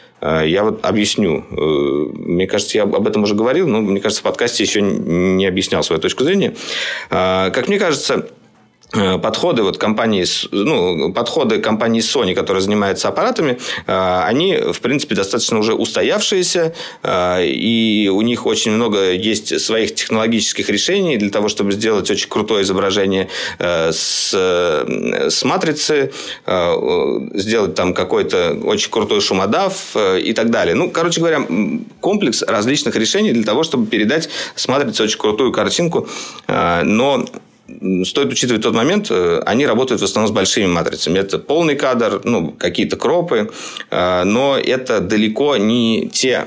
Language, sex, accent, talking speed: Russian, male, native, 135 wpm